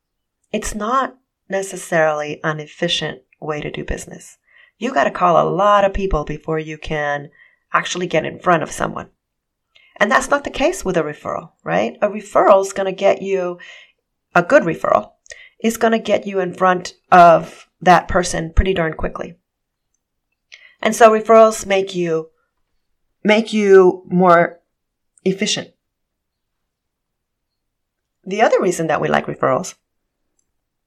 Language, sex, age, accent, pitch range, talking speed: English, female, 30-49, American, 175-220 Hz, 140 wpm